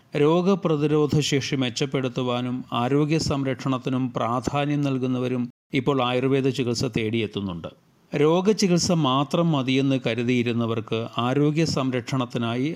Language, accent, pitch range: Malayalam, native, 125-150 Hz